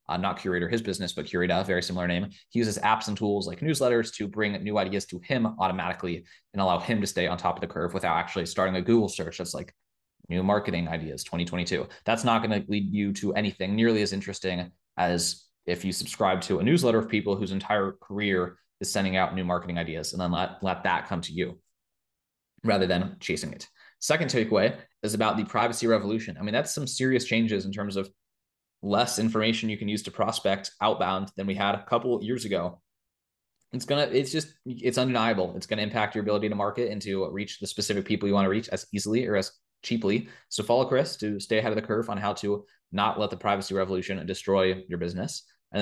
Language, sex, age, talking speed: English, male, 20-39, 225 wpm